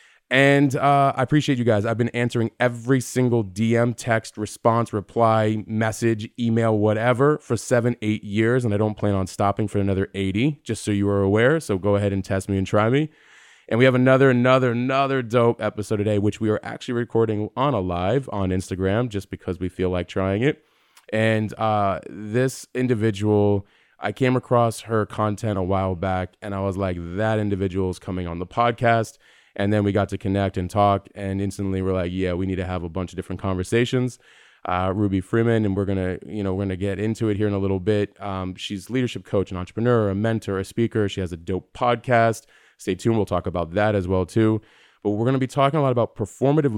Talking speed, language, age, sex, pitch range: 215 wpm, English, 20-39, male, 95-120 Hz